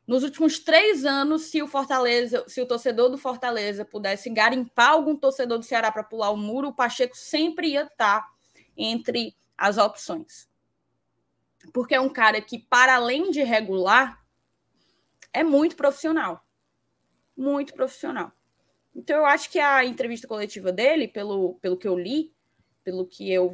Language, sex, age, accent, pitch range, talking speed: Portuguese, female, 10-29, Brazilian, 200-265 Hz, 150 wpm